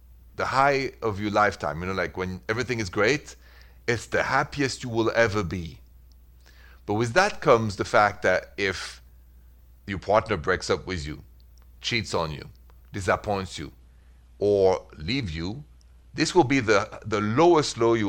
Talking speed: 165 wpm